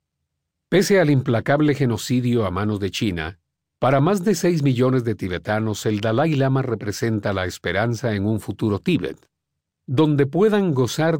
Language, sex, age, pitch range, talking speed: Spanish, male, 50-69, 100-135 Hz, 150 wpm